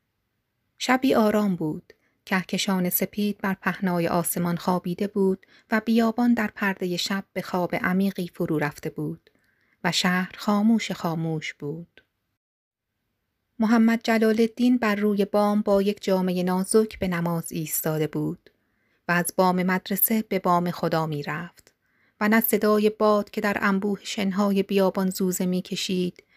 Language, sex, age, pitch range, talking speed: Persian, female, 30-49, 170-210 Hz, 135 wpm